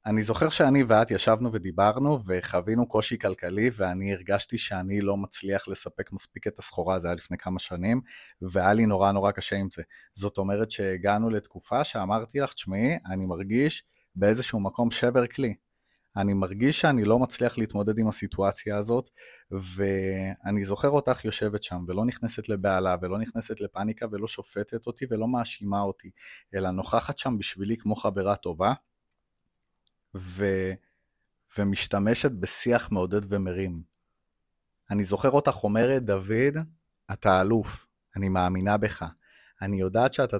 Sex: male